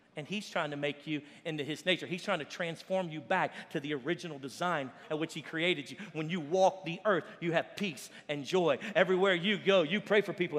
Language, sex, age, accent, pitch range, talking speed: English, male, 40-59, American, 185-225 Hz, 230 wpm